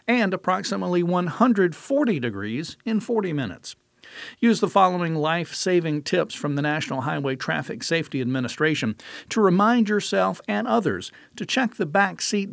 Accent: American